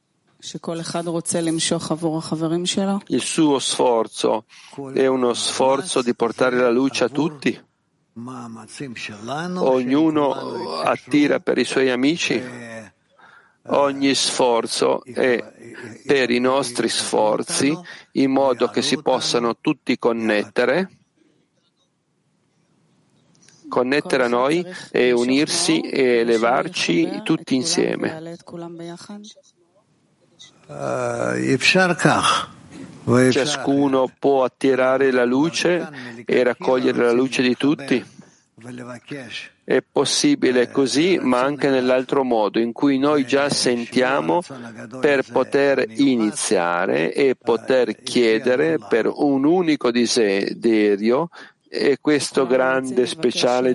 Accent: native